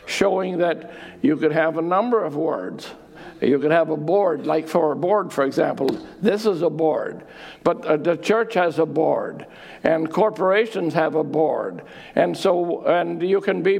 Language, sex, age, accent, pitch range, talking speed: English, male, 60-79, American, 160-185 Hz, 185 wpm